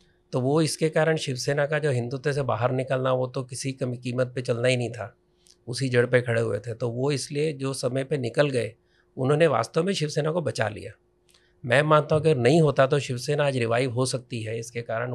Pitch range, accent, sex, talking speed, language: 120-145 Hz, native, male, 230 wpm, Hindi